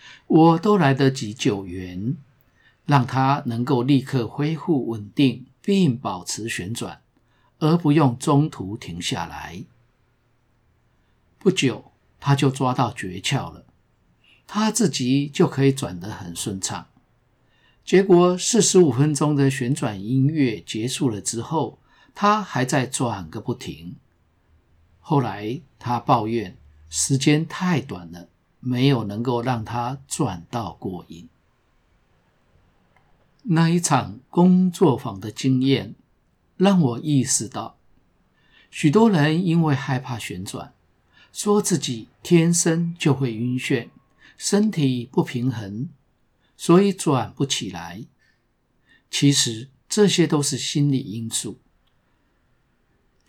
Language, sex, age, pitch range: Chinese, male, 50-69, 115-155 Hz